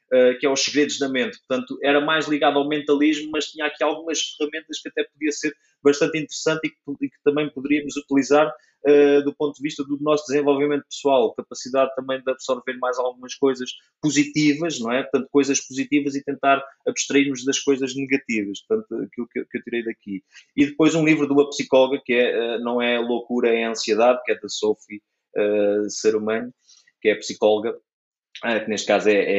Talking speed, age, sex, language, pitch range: 200 wpm, 20-39, male, Portuguese, 125-150 Hz